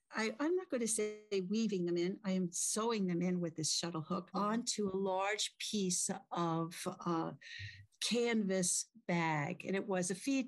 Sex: female